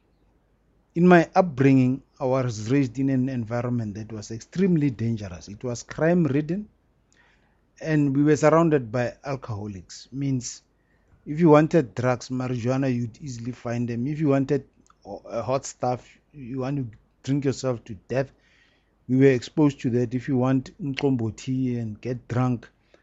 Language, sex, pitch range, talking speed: English, male, 115-140 Hz, 150 wpm